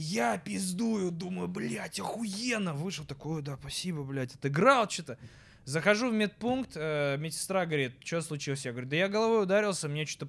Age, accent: 20-39, native